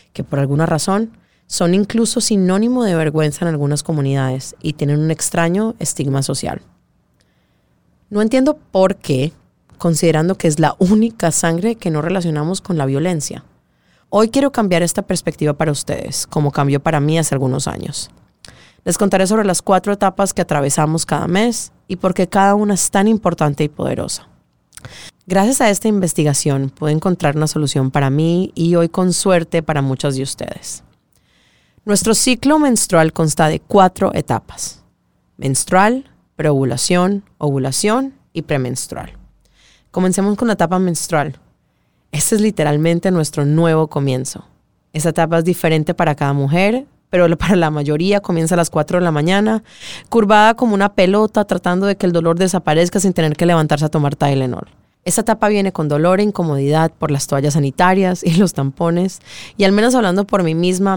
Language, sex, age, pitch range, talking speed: English, female, 30-49, 150-195 Hz, 160 wpm